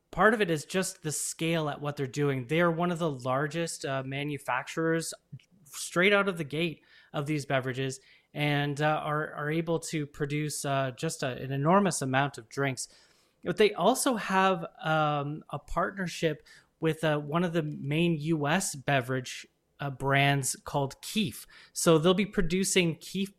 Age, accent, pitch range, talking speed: 20-39, American, 145-175 Hz, 165 wpm